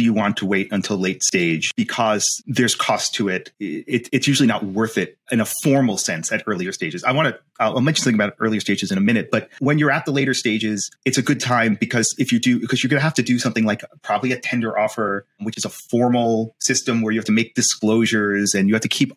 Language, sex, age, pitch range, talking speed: English, male, 30-49, 110-135 Hz, 260 wpm